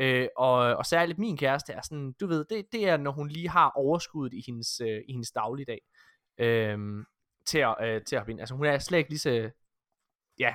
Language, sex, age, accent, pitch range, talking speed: Danish, male, 20-39, native, 130-195 Hz, 210 wpm